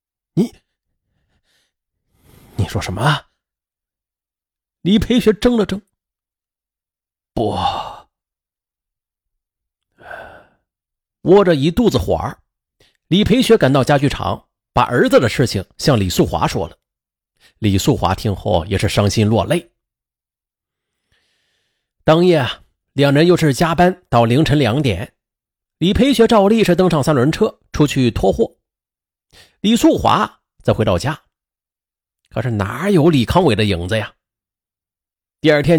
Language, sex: Chinese, male